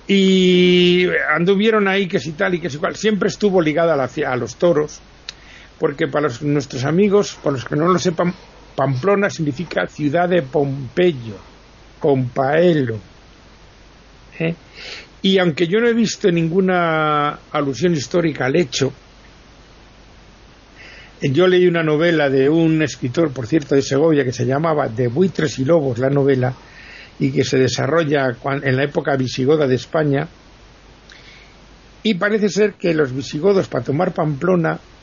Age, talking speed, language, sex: 60-79, 145 wpm, Spanish, male